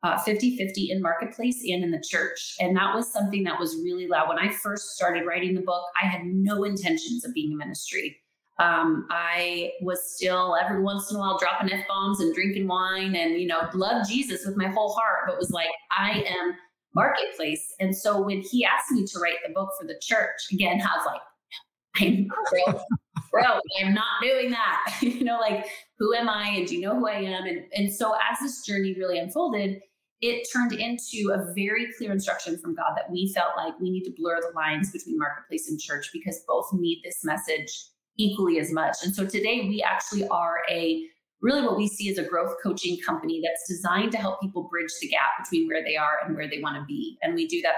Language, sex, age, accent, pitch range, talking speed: English, female, 30-49, American, 175-220 Hz, 220 wpm